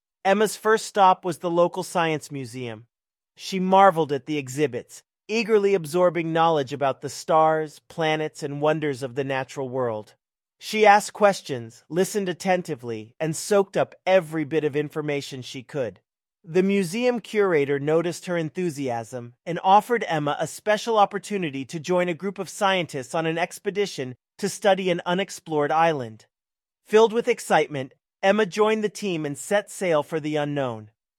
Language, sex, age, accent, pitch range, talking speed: English, male, 40-59, American, 150-200 Hz, 150 wpm